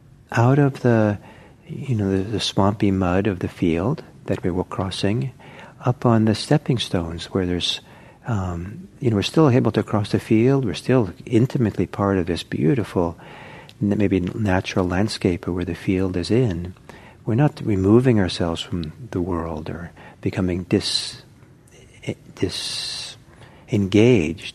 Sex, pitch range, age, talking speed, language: male, 95-130 Hz, 60-79, 140 wpm, English